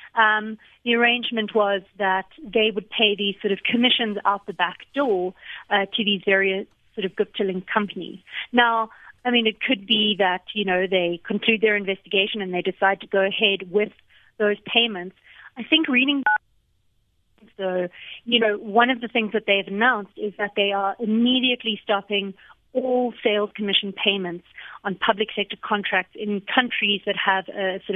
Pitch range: 195-230 Hz